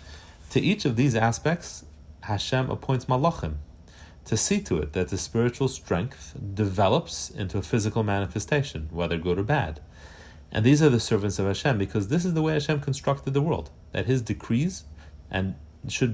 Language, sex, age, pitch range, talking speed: English, male, 30-49, 85-120 Hz, 170 wpm